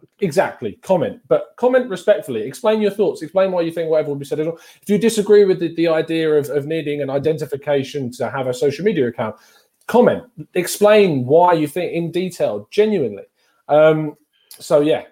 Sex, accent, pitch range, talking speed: male, British, 110-150 Hz, 185 wpm